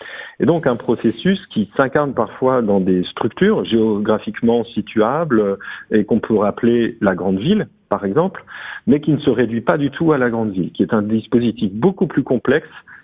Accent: French